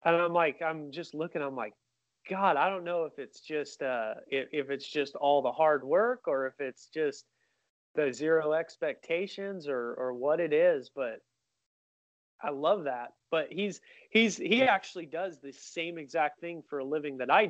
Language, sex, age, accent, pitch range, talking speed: English, male, 30-49, American, 125-155 Hz, 185 wpm